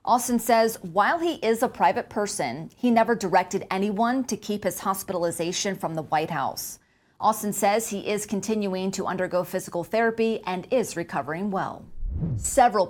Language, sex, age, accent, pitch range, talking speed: English, female, 30-49, American, 180-220 Hz, 160 wpm